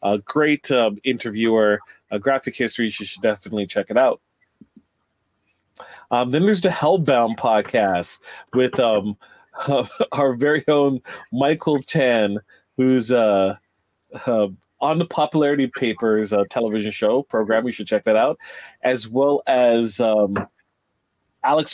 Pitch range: 110-145 Hz